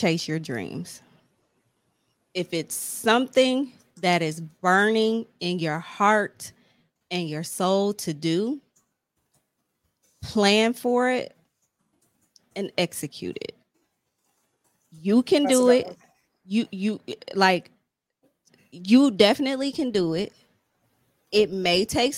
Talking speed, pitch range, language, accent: 105 wpm, 170-220 Hz, English, American